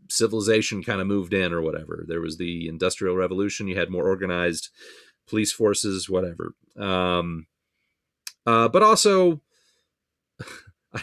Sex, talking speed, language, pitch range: male, 130 wpm, English, 100-165 Hz